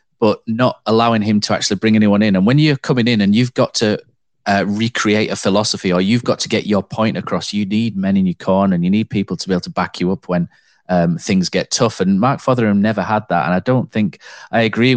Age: 30-49